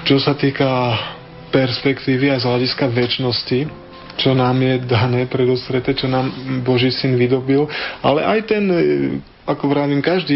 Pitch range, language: 120-135 Hz, Slovak